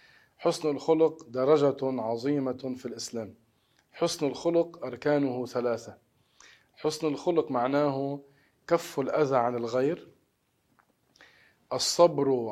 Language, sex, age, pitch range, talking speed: Arabic, male, 40-59, 125-150 Hz, 85 wpm